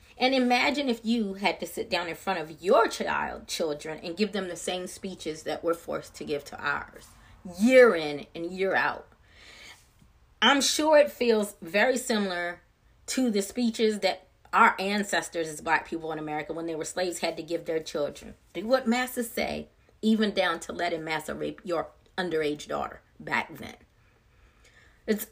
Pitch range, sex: 170-220 Hz, female